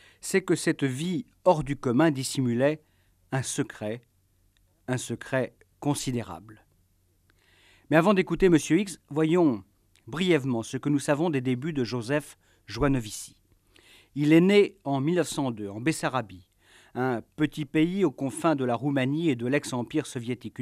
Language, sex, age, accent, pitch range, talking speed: French, male, 50-69, French, 110-150 Hz, 140 wpm